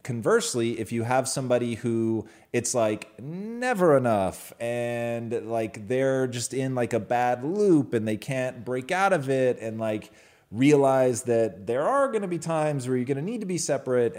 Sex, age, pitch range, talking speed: male, 30-49, 100-130 Hz, 185 wpm